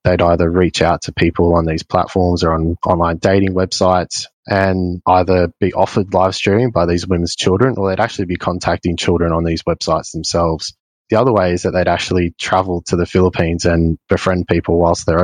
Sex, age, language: male, 20-39, English